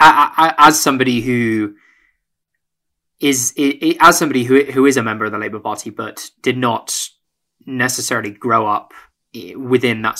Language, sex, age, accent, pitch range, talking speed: English, male, 20-39, British, 105-130 Hz, 135 wpm